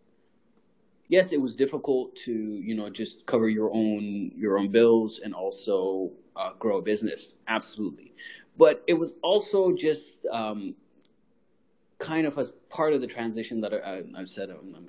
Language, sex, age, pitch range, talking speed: English, male, 30-49, 100-145 Hz, 160 wpm